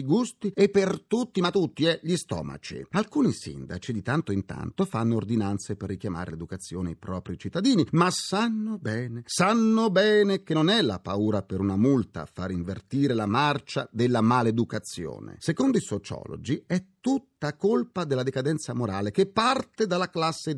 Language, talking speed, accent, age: Italian, 165 wpm, native, 40-59